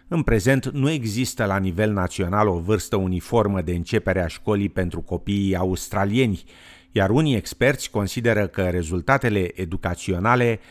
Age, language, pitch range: 50-69, Romanian, 90-120 Hz